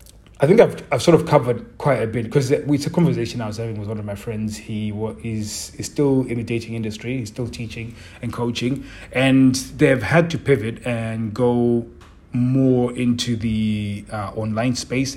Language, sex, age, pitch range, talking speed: English, male, 30-49, 105-125 Hz, 190 wpm